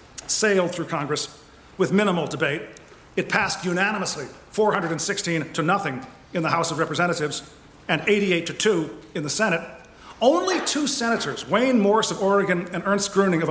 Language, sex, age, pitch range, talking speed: English, male, 40-59, 170-225 Hz, 155 wpm